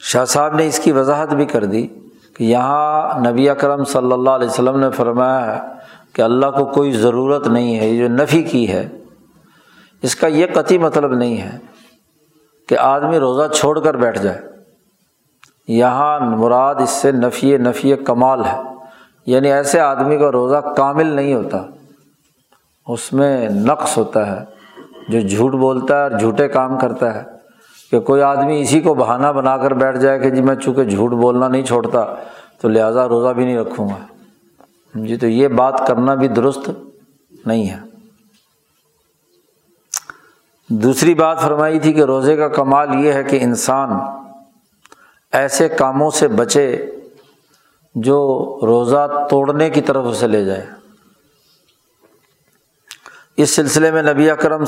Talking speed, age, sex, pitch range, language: 155 wpm, 50-69, male, 125-145 Hz, Urdu